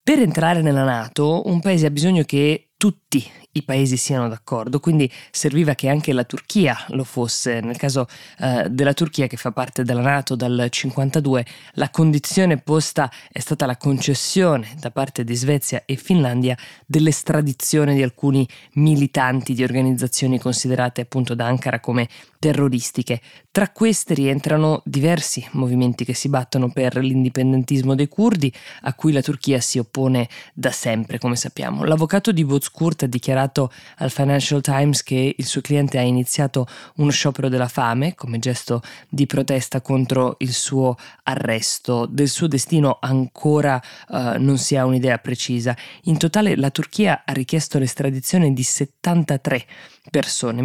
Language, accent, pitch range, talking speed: Italian, native, 125-150 Hz, 150 wpm